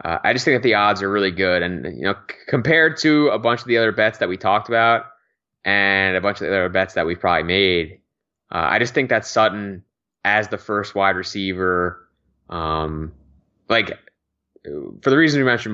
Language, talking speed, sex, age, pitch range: English, 210 wpm, male, 20-39, 90-115 Hz